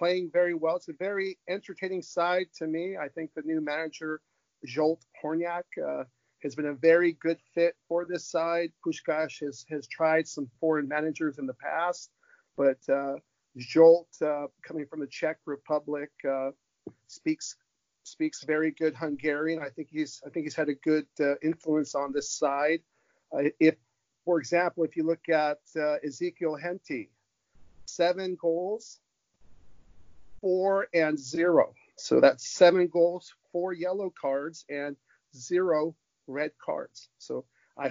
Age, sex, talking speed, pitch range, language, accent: 50-69, male, 150 wpm, 150-175 Hz, English, American